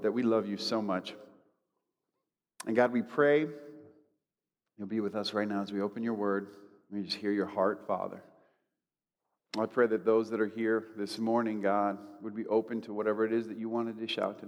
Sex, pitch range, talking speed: male, 105-140 Hz, 205 wpm